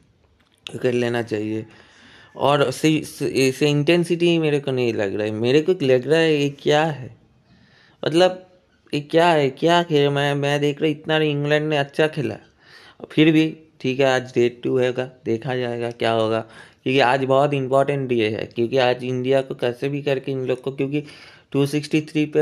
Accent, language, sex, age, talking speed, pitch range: native, Hindi, male, 20-39, 185 wpm, 120-150 Hz